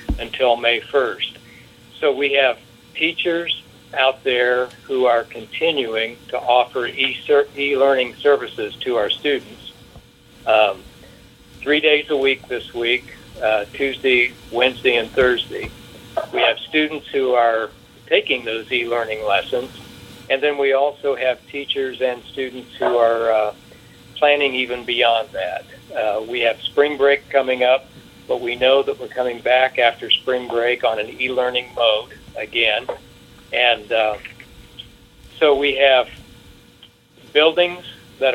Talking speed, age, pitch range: 130 wpm, 60-79, 120-140 Hz